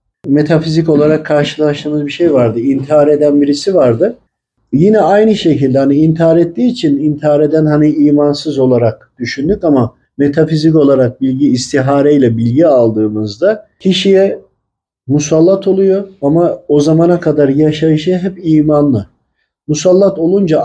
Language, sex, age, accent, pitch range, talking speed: Turkish, male, 50-69, native, 140-190 Hz, 120 wpm